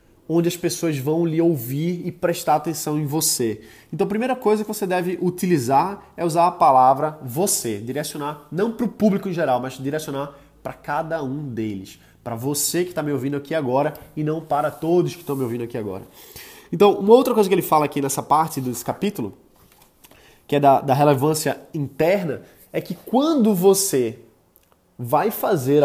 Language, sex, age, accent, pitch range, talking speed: Portuguese, male, 20-39, Brazilian, 140-195 Hz, 185 wpm